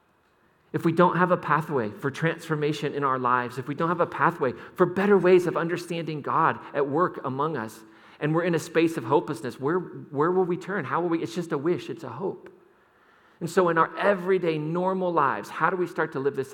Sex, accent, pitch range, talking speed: male, American, 140-185 Hz, 230 wpm